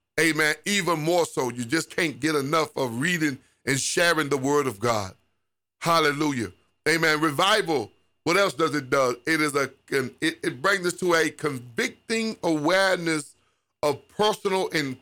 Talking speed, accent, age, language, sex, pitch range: 160 wpm, American, 50-69, English, male, 135-170 Hz